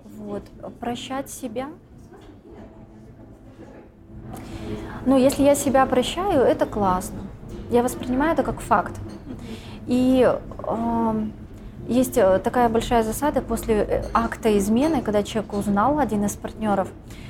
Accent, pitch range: native, 195-250 Hz